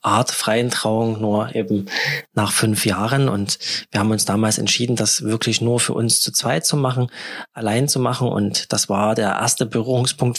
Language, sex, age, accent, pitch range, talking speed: German, male, 20-39, German, 110-125 Hz, 185 wpm